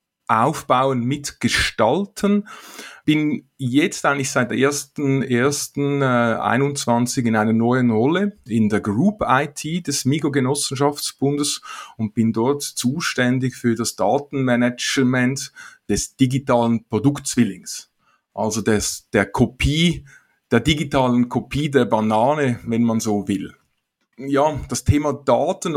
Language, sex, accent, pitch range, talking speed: German, male, Austrian, 120-140 Hz, 110 wpm